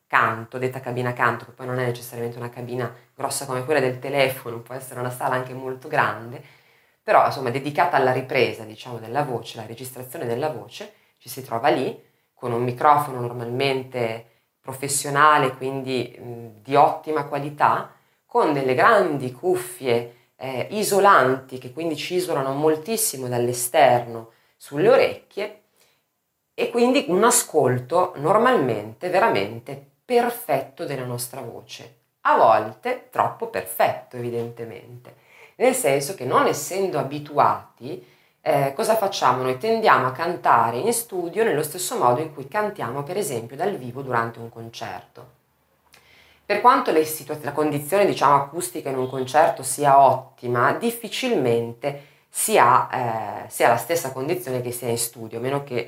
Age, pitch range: 20-39, 120-155 Hz